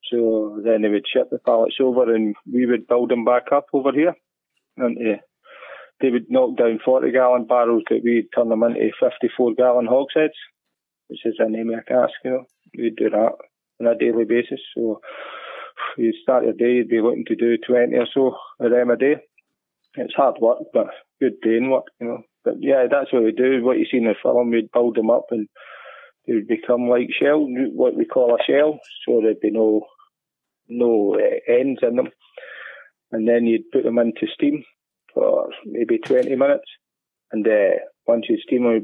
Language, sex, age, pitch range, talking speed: English, male, 20-39, 115-135 Hz, 195 wpm